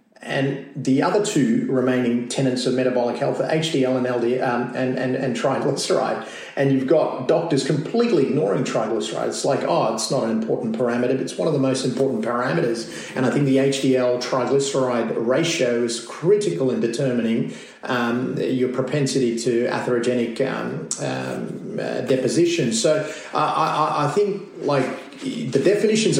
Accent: Australian